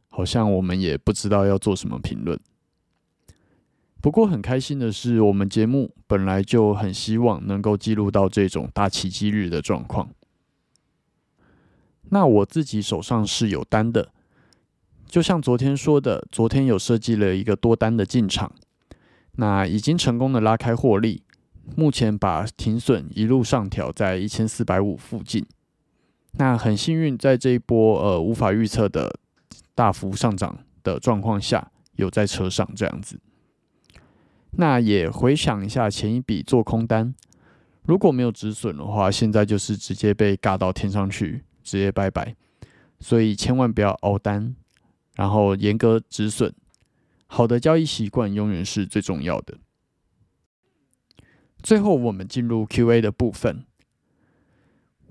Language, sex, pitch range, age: Chinese, male, 100-125 Hz, 30-49